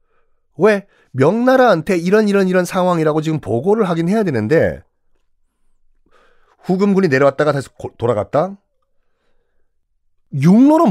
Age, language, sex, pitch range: 40-59, Korean, male, 140-215 Hz